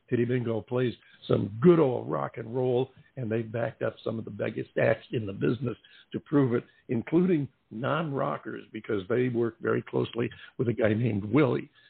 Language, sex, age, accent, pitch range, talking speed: English, male, 60-79, American, 110-140 Hz, 185 wpm